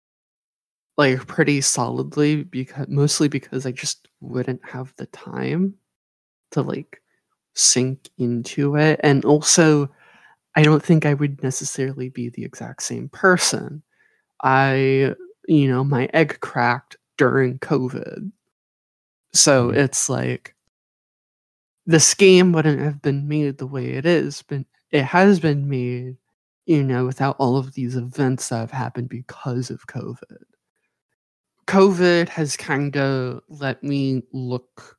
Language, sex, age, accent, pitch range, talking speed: English, male, 20-39, American, 125-150 Hz, 130 wpm